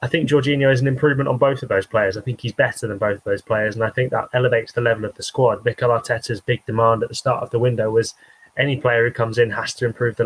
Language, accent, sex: English, British, male